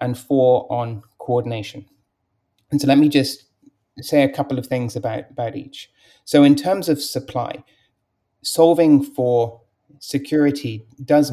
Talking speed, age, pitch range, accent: 140 wpm, 30-49, 115-135 Hz, British